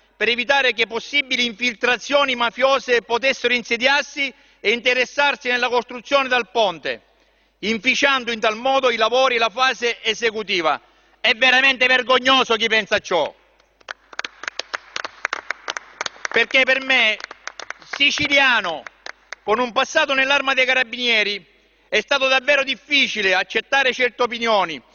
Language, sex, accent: Italian, male, native